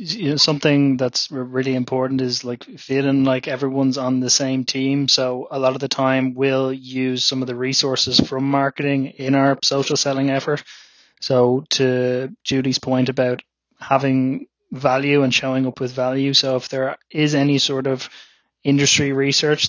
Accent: Irish